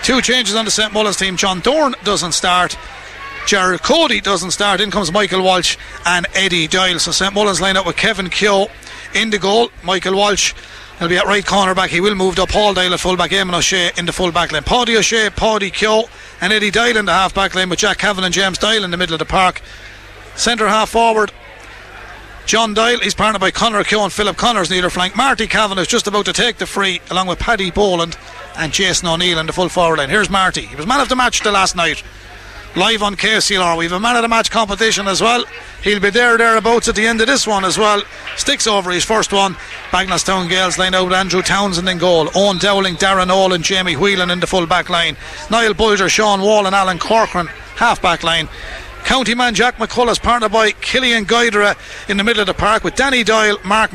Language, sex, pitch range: English, male, 180-215 Hz